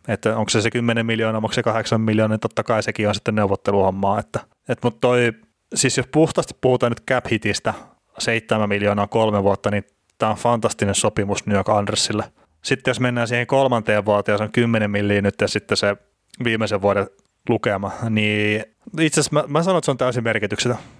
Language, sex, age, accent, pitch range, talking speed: Finnish, male, 30-49, native, 105-120 Hz, 190 wpm